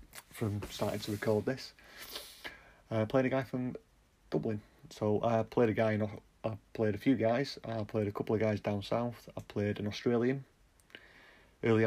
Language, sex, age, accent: English, male, 30-49, British